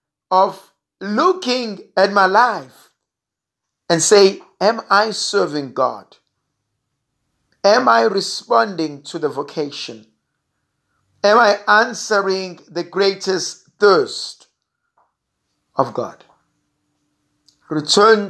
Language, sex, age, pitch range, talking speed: English, male, 50-69, 150-205 Hz, 85 wpm